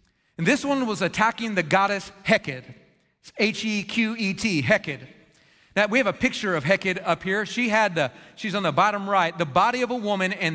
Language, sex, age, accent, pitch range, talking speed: English, male, 30-49, American, 175-225 Hz, 195 wpm